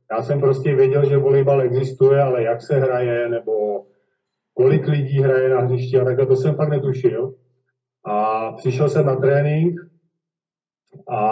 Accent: native